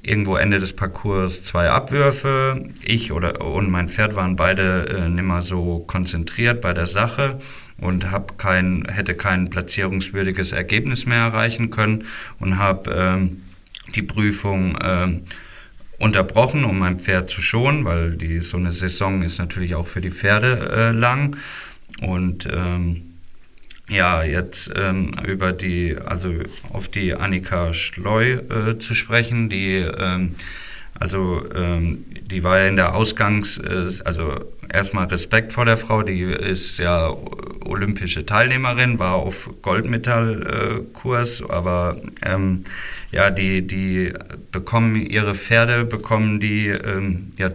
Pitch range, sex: 90-110 Hz, male